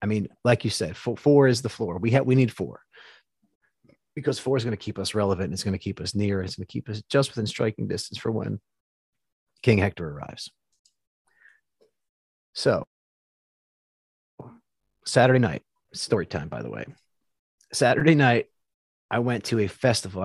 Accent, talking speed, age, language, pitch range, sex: American, 170 wpm, 30-49, English, 95-125 Hz, male